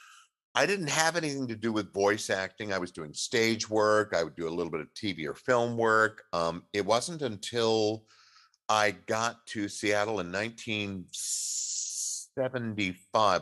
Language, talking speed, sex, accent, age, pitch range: English, 155 wpm, male, American, 50-69, 85-115 Hz